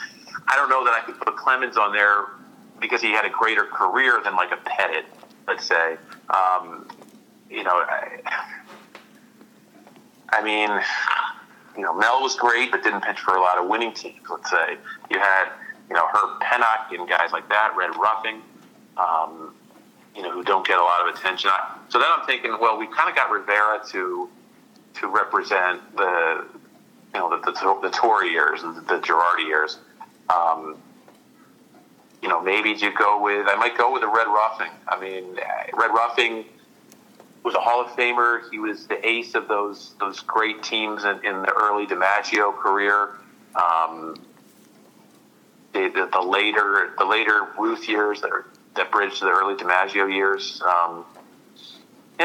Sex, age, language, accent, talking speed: male, 40-59, English, American, 170 wpm